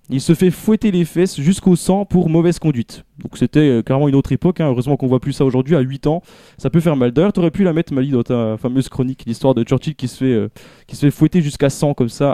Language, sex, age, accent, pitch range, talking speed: French, male, 20-39, French, 135-175 Hz, 285 wpm